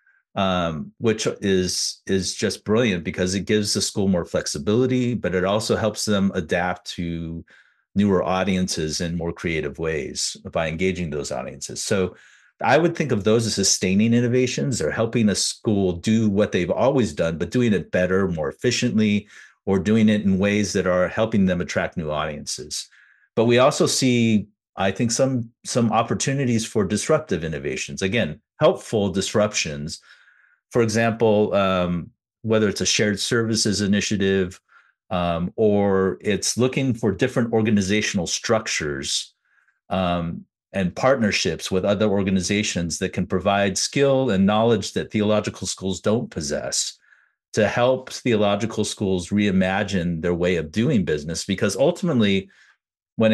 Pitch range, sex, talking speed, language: 95-115 Hz, male, 145 wpm, English